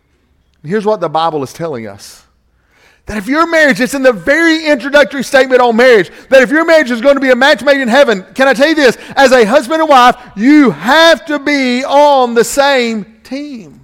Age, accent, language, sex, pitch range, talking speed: 40-59, American, English, male, 195-280 Hz, 215 wpm